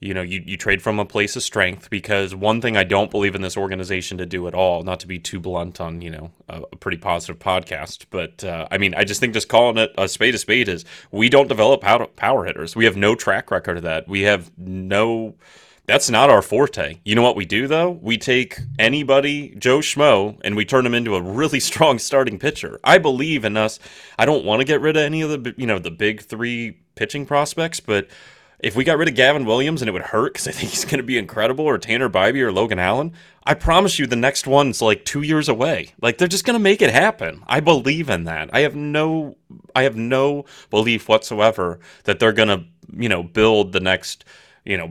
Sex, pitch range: male, 95-135 Hz